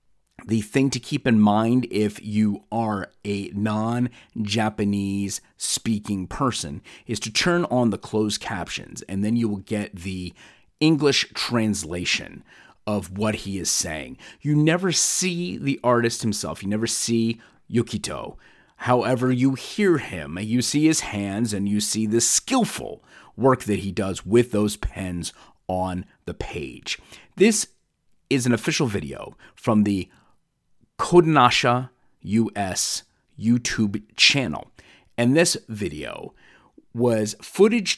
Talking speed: 130 wpm